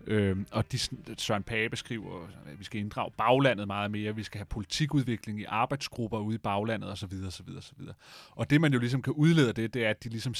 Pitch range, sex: 105-130 Hz, male